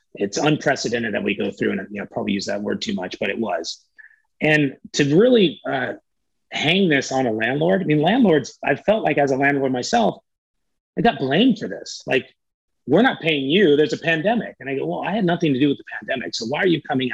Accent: American